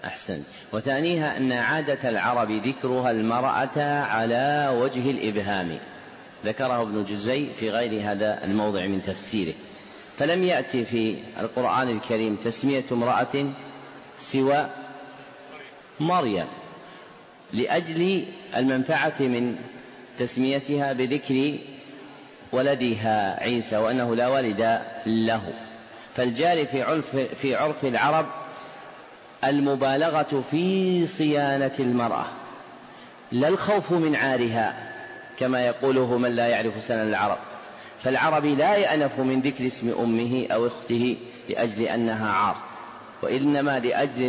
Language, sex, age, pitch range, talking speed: Arabic, male, 40-59, 115-145 Hz, 100 wpm